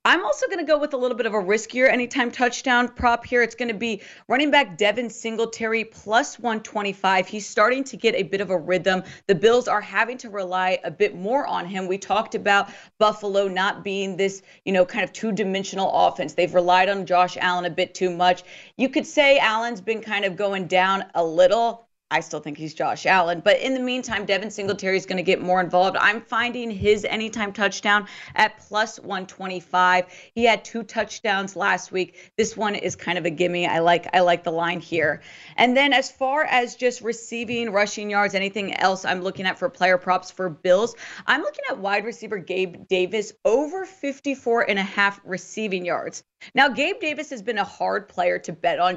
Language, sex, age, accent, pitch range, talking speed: English, female, 40-59, American, 185-230 Hz, 205 wpm